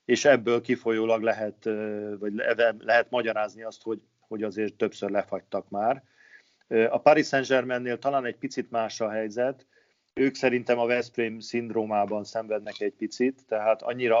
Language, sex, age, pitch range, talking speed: Hungarian, male, 50-69, 105-120 Hz, 145 wpm